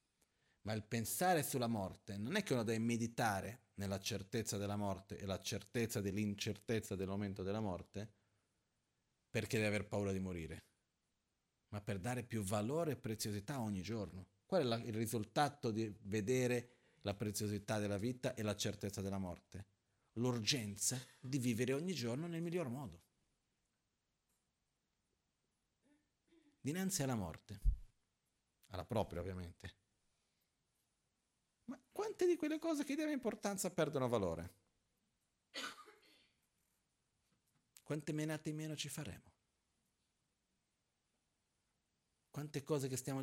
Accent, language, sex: native, Italian, male